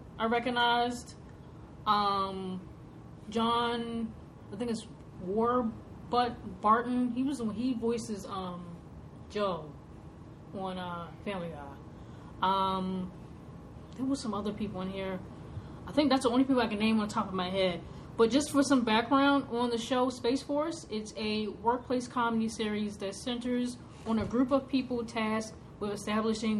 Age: 20-39